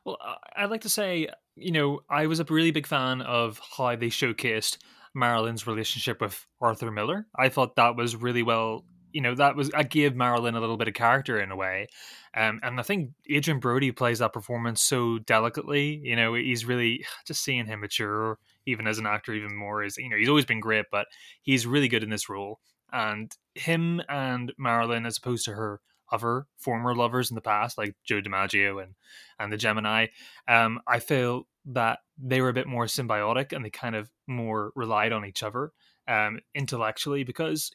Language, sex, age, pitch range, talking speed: English, male, 20-39, 110-140 Hz, 200 wpm